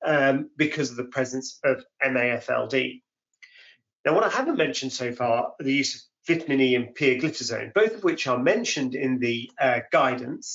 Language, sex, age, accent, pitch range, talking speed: English, male, 40-59, British, 130-190 Hz, 170 wpm